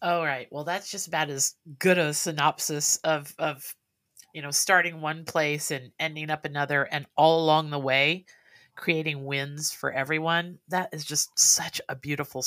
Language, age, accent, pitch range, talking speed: English, 50-69, American, 145-180 Hz, 175 wpm